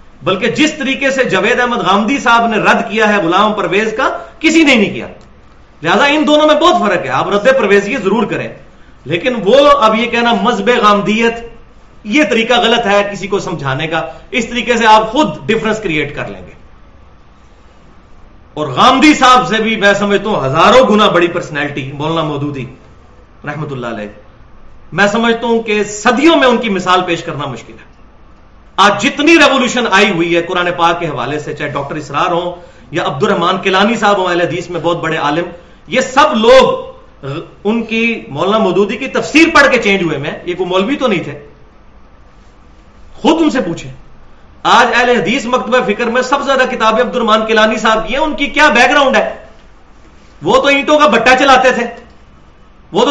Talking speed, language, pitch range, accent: 150 wpm, English, 165-245 Hz, Indian